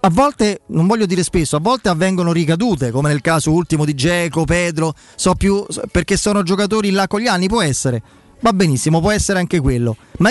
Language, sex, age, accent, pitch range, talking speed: Italian, male, 30-49, native, 160-210 Hz, 205 wpm